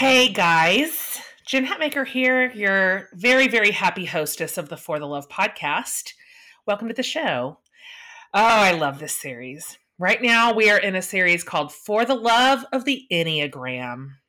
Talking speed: 165 wpm